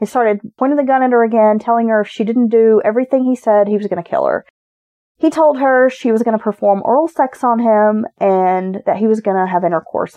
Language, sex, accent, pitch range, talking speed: English, female, American, 205-260 Hz, 255 wpm